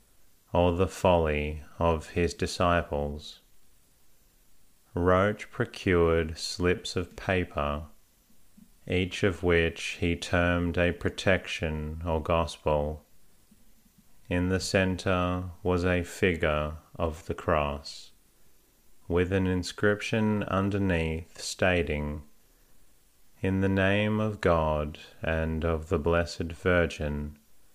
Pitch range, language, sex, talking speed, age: 80-95 Hz, English, male, 95 wpm, 30-49